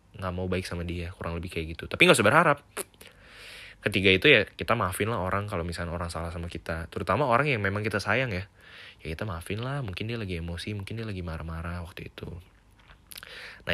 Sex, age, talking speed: male, 20-39, 210 wpm